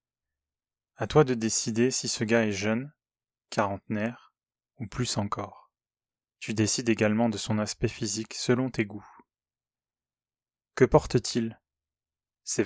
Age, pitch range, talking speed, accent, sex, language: 20-39, 105-120 Hz, 125 wpm, French, male, French